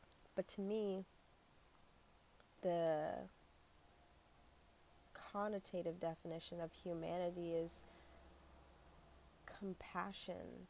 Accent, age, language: American, 20-39, English